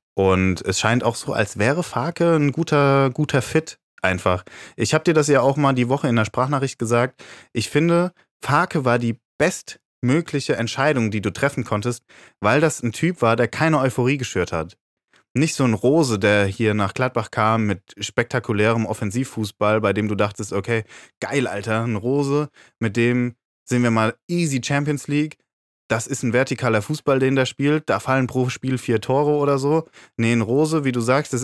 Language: German